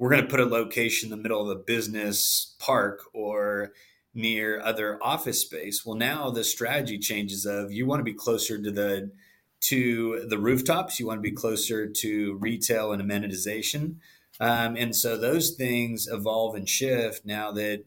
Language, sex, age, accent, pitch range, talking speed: English, male, 30-49, American, 105-115 Hz, 180 wpm